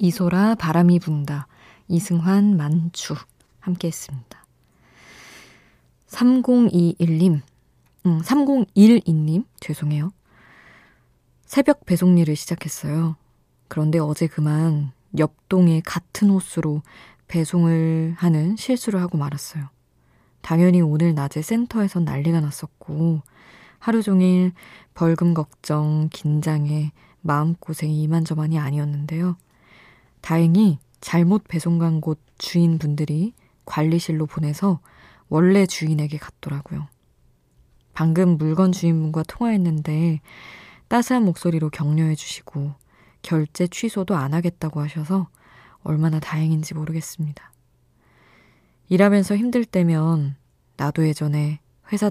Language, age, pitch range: Korean, 20-39, 150-175 Hz